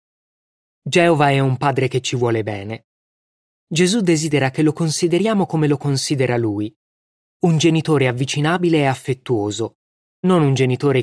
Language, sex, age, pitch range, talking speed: Italian, male, 20-39, 115-150 Hz, 135 wpm